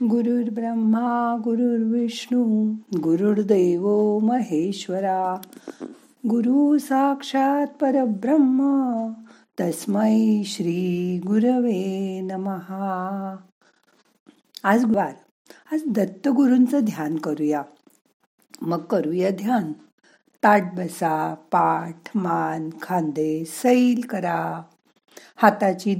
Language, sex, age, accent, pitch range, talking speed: Marathi, female, 50-69, native, 180-235 Hz, 65 wpm